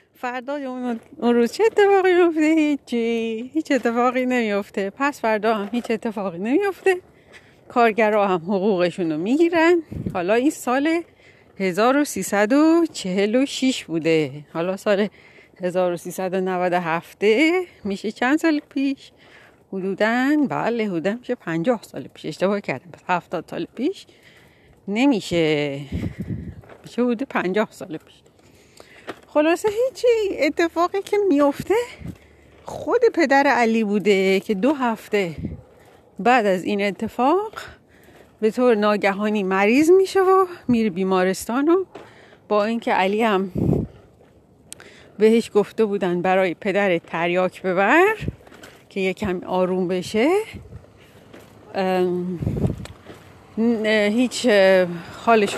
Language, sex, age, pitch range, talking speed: Persian, female, 40-59, 190-285 Hz, 100 wpm